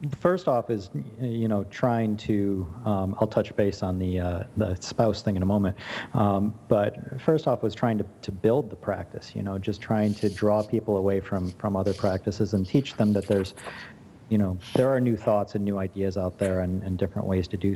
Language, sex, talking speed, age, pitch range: English, male, 220 wpm, 40-59, 95-110 Hz